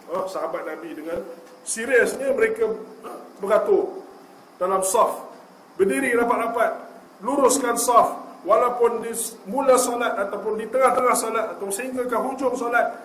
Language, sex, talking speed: Malay, male, 120 wpm